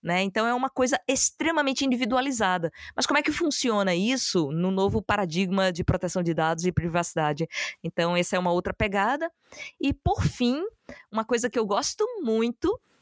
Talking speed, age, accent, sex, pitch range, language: 170 wpm, 20-39, Brazilian, female, 175-230 Hz, Portuguese